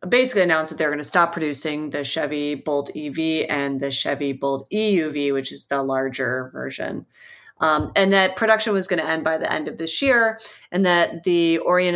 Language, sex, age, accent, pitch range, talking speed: English, female, 30-49, American, 150-190 Hz, 200 wpm